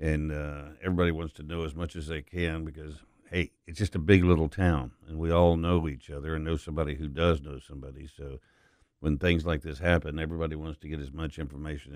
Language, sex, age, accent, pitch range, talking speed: English, male, 60-79, American, 75-85 Hz, 225 wpm